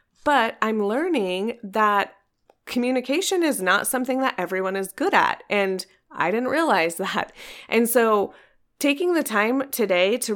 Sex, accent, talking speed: female, American, 145 wpm